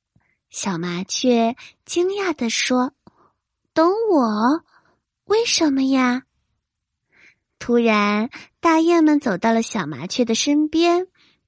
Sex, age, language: female, 20-39, Chinese